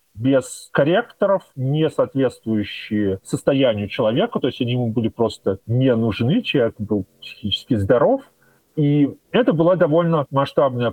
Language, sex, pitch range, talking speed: Russian, male, 120-180 Hz, 125 wpm